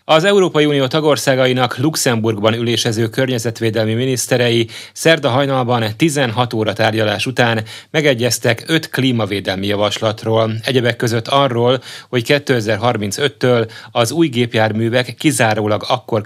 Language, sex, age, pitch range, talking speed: Hungarian, male, 30-49, 105-130 Hz, 105 wpm